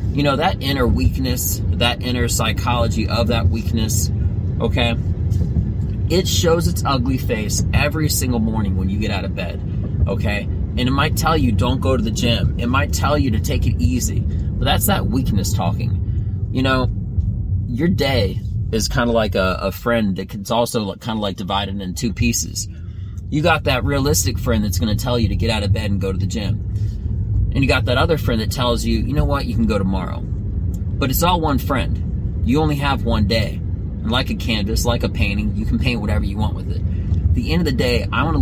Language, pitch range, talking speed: English, 95-110 Hz, 220 wpm